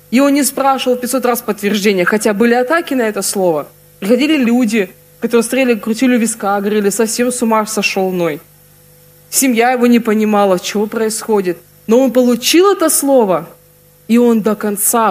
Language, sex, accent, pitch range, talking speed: Russian, female, native, 185-245 Hz, 160 wpm